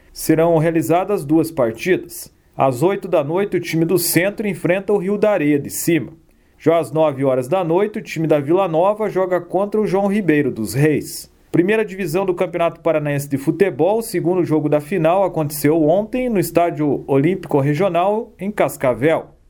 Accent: Brazilian